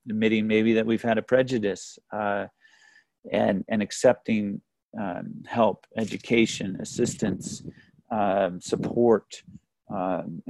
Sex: male